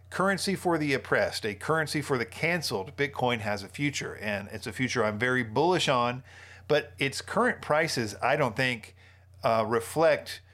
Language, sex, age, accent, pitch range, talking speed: English, male, 40-59, American, 110-145 Hz, 170 wpm